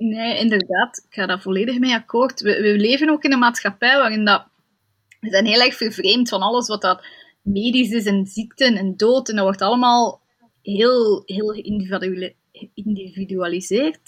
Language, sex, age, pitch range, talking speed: Dutch, female, 20-39, 195-250 Hz, 160 wpm